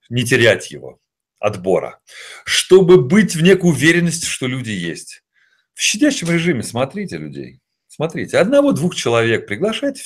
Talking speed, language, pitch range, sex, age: 130 wpm, Russian, 110-185 Hz, male, 40-59